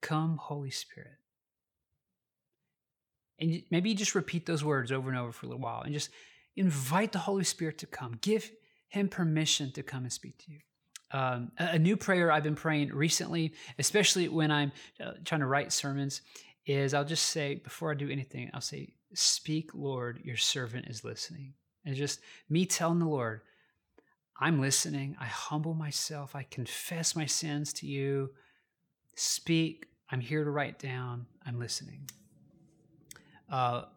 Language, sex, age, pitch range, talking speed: English, male, 30-49, 140-165 Hz, 165 wpm